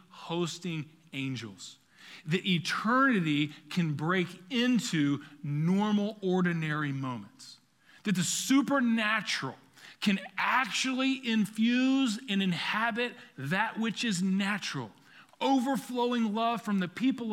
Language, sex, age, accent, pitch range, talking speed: English, male, 40-59, American, 170-230 Hz, 95 wpm